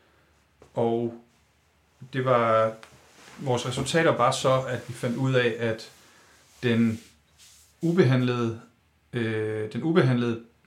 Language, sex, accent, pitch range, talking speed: Danish, male, native, 110-125 Hz, 95 wpm